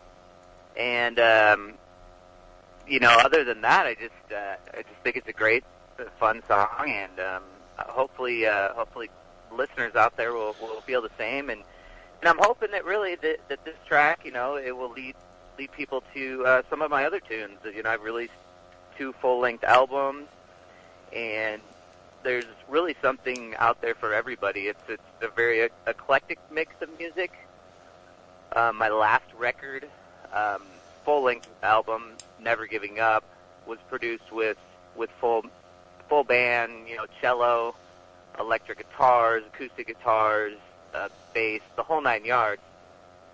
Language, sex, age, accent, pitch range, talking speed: English, male, 30-49, American, 105-130 Hz, 150 wpm